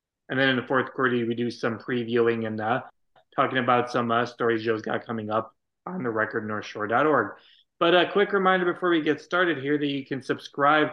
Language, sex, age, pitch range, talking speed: English, male, 30-49, 120-140 Hz, 205 wpm